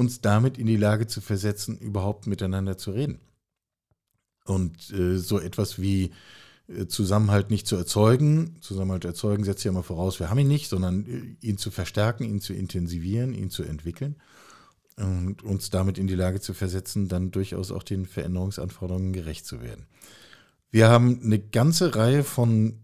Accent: German